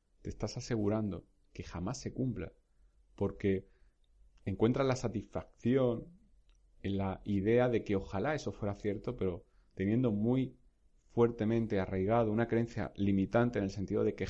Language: Spanish